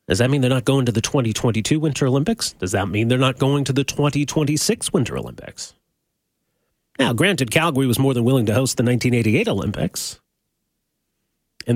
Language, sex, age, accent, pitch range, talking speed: English, male, 30-49, American, 115-150 Hz, 180 wpm